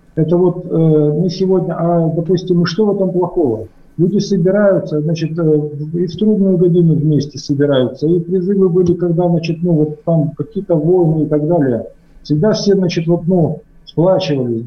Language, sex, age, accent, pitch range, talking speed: Russian, male, 50-69, native, 150-185 Hz, 165 wpm